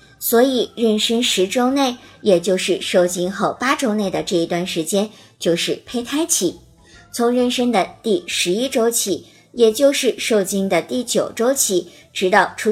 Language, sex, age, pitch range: Chinese, male, 50-69, 185-245 Hz